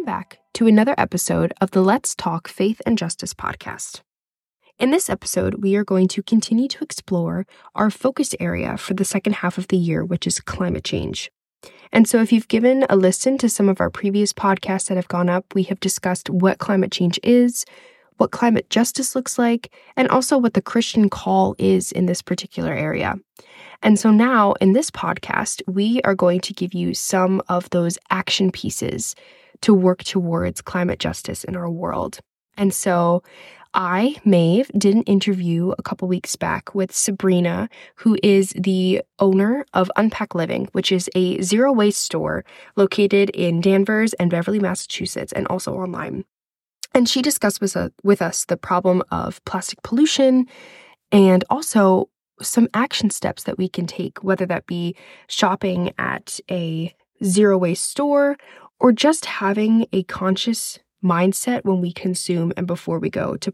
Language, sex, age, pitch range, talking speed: English, female, 10-29, 185-230 Hz, 165 wpm